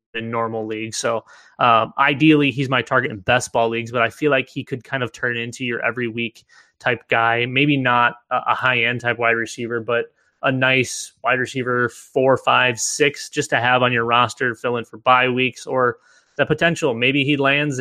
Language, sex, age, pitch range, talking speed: English, male, 20-39, 120-140 Hz, 200 wpm